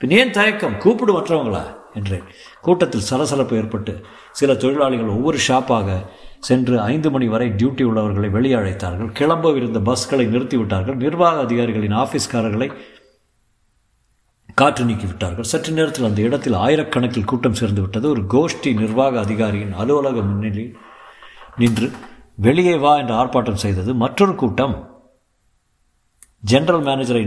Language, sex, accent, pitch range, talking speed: Tamil, male, native, 110-140 Hz, 115 wpm